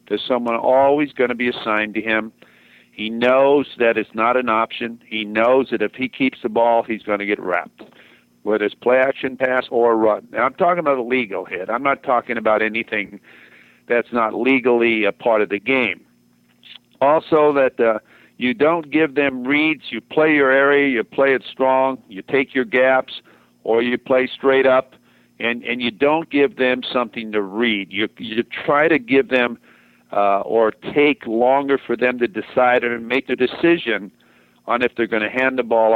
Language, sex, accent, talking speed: English, male, American, 195 wpm